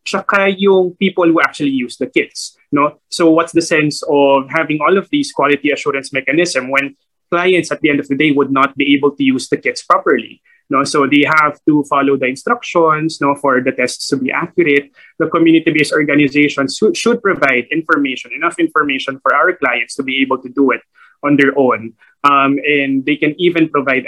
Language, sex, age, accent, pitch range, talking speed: English, male, 20-39, Filipino, 135-175 Hz, 205 wpm